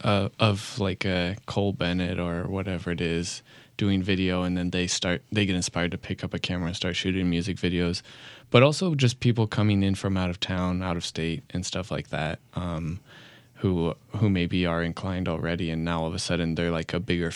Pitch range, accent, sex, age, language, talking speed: 90-115 Hz, American, male, 20-39, English, 220 wpm